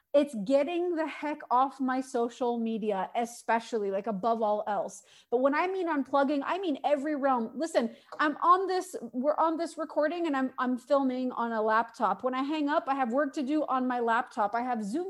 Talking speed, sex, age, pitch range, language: 205 wpm, female, 30-49, 245-315 Hz, English